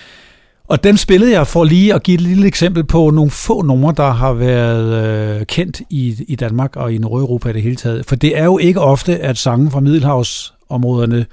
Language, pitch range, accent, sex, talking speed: Danish, 125-155 Hz, native, male, 210 wpm